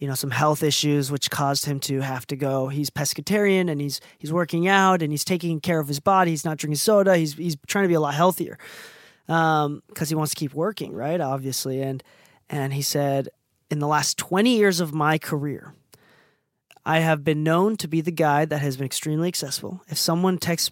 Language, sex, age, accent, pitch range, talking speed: English, male, 20-39, American, 145-180 Hz, 215 wpm